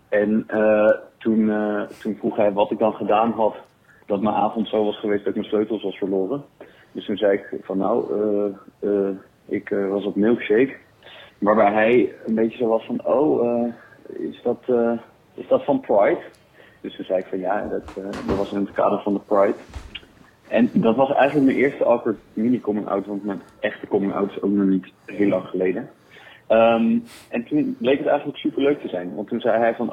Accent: Dutch